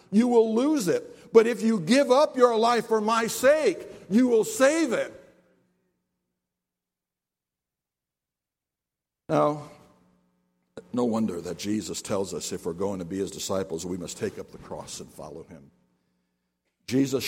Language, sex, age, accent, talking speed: English, male, 60-79, American, 145 wpm